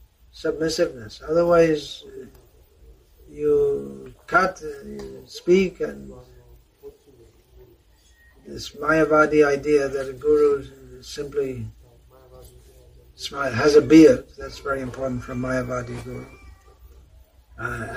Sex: male